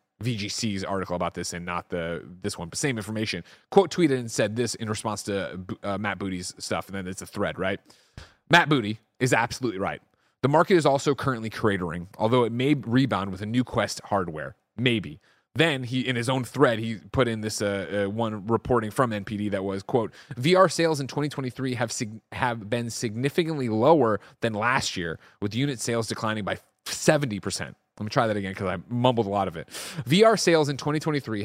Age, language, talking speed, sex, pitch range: 30-49, English, 200 wpm, male, 105-140 Hz